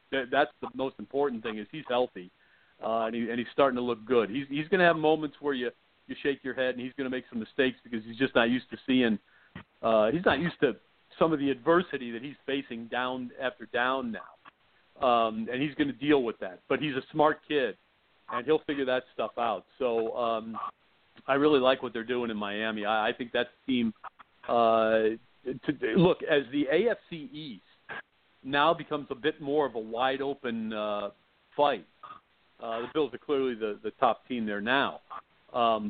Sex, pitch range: male, 115-145 Hz